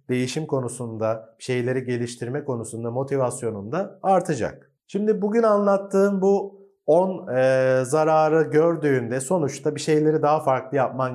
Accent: native